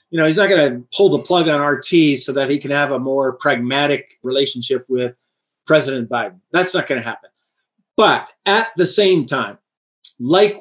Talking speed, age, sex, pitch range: 190 wpm, 50-69, male, 135-170 Hz